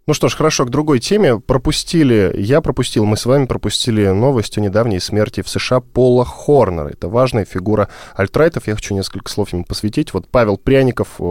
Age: 10-29